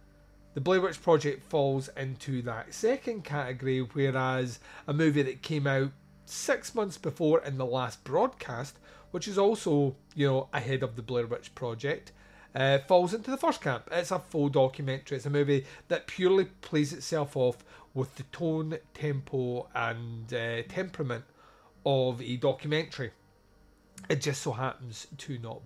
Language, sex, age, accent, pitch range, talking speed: English, male, 30-49, British, 125-155 Hz, 155 wpm